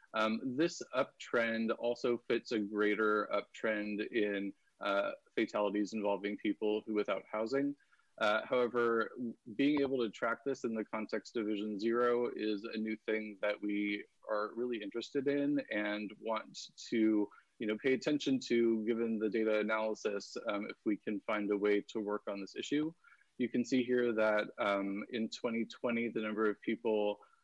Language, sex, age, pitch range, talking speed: English, male, 20-39, 105-120 Hz, 155 wpm